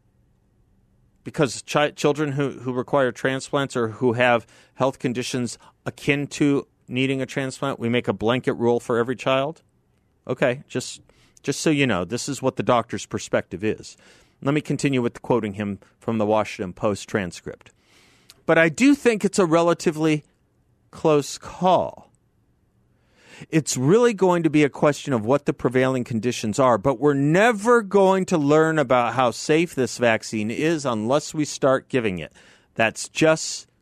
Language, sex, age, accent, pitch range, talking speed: English, male, 50-69, American, 120-155 Hz, 160 wpm